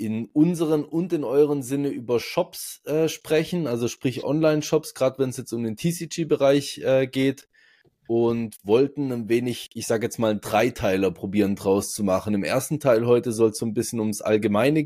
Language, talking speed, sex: German, 185 wpm, male